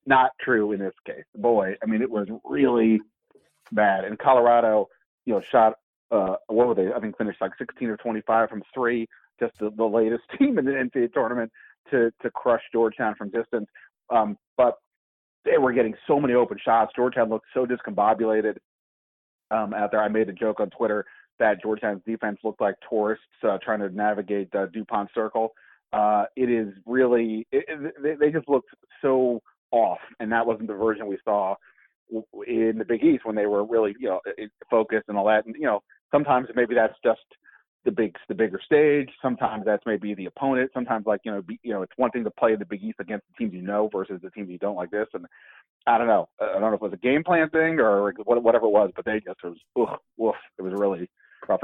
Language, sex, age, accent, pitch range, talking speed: English, male, 30-49, American, 105-120 Hz, 215 wpm